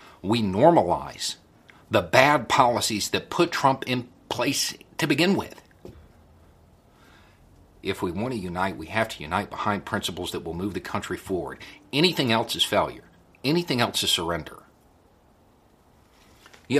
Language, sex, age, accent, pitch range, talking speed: English, male, 50-69, American, 95-120 Hz, 140 wpm